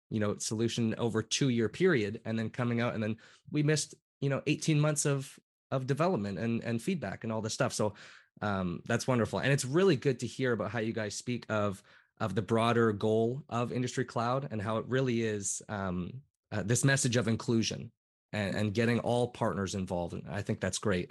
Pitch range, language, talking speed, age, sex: 105-130 Hz, English, 210 wpm, 20-39, male